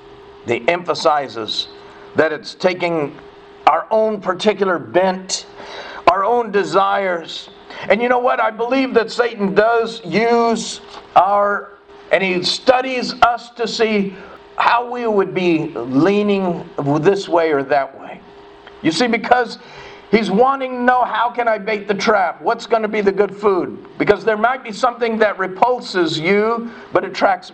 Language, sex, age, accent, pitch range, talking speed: English, male, 50-69, American, 185-270 Hz, 150 wpm